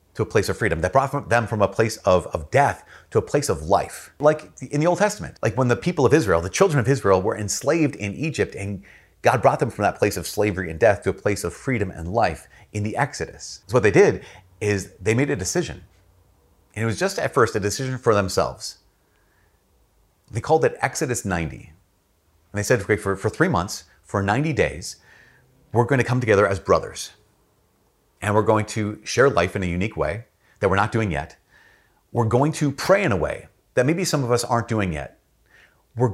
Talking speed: 220 wpm